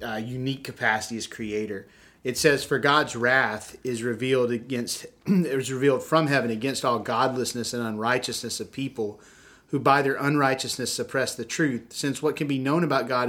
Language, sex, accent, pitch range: English, male, American, 120-140 Hz